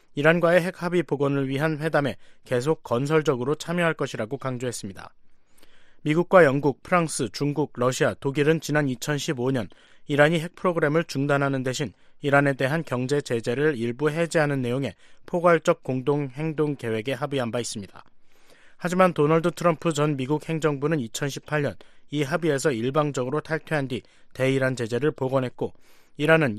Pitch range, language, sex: 125-165 Hz, Korean, male